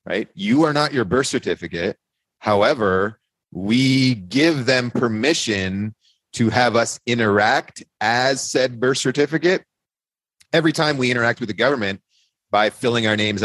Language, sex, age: English, male, 30-49